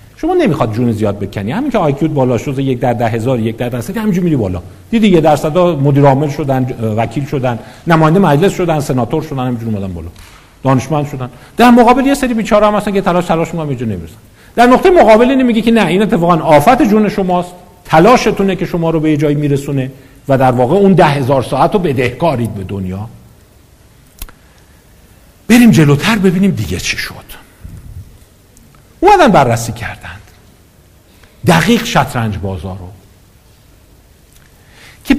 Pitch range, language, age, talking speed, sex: 115-190 Hz, Persian, 50-69, 165 wpm, male